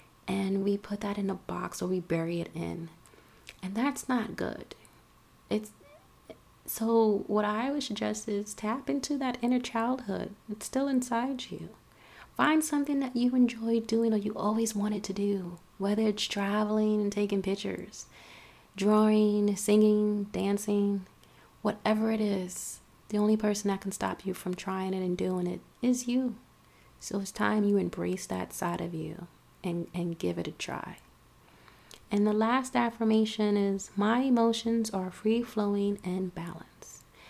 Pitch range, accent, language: 185-225 Hz, American, English